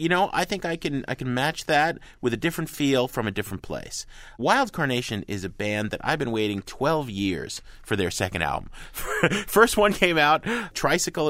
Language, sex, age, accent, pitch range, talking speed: English, male, 30-49, American, 95-130 Hz, 200 wpm